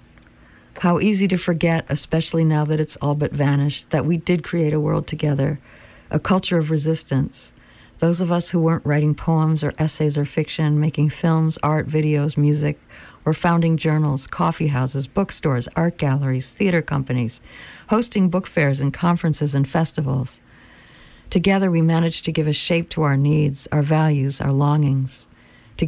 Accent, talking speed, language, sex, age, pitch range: American, 160 wpm, English, female, 60-79, 145-165 Hz